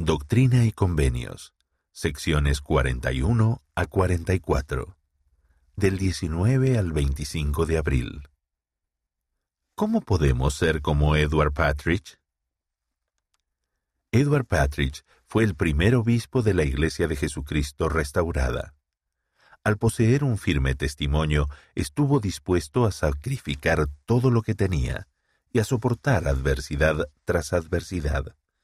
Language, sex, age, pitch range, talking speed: Spanish, male, 50-69, 70-95 Hz, 105 wpm